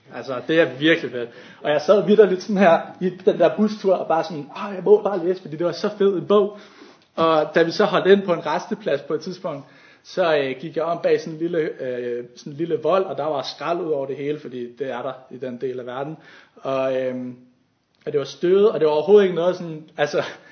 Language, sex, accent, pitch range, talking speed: Danish, male, native, 140-185 Hz, 250 wpm